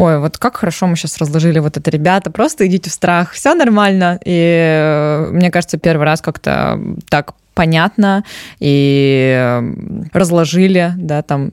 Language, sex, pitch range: Russian, female, 150-190 Hz